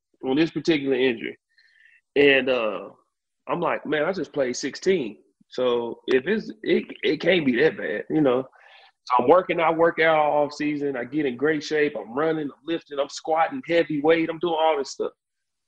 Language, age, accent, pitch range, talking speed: English, 30-49, American, 140-175 Hz, 190 wpm